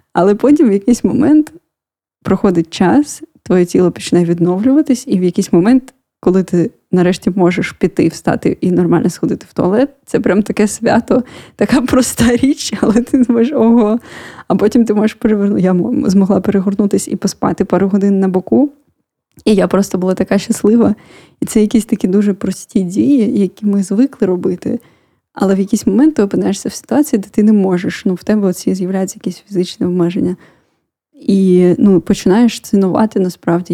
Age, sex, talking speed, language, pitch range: 20-39, female, 165 wpm, Ukrainian, 185-230 Hz